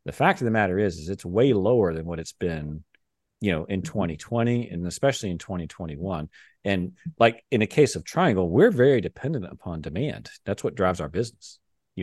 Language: English